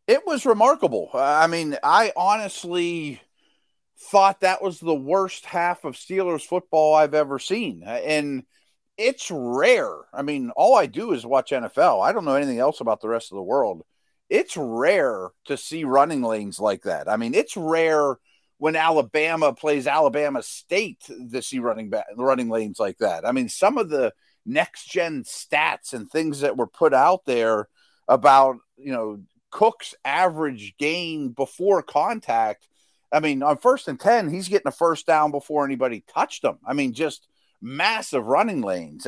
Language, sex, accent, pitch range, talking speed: English, male, American, 130-190 Hz, 165 wpm